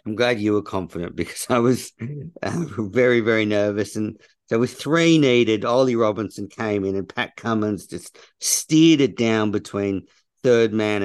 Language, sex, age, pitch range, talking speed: English, male, 50-69, 100-120 Hz, 170 wpm